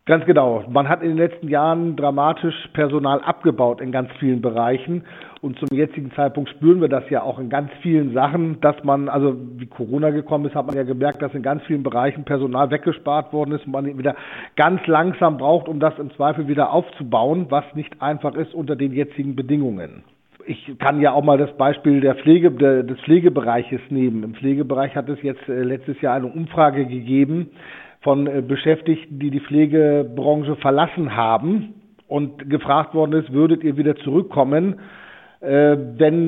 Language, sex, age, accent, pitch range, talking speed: German, male, 50-69, German, 140-160 Hz, 180 wpm